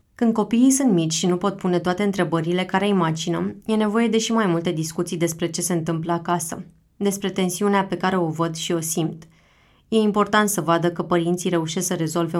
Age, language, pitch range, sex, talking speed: 20-39, Romanian, 170-195 Hz, female, 205 wpm